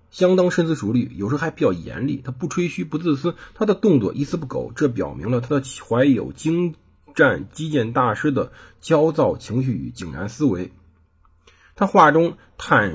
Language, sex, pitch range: Chinese, male, 100-170 Hz